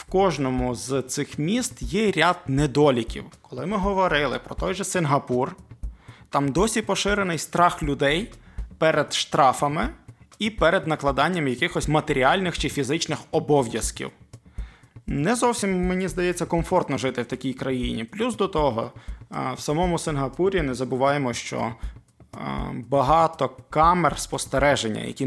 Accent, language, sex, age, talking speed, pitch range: native, Ukrainian, male, 20-39, 125 wpm, 125-150 Hz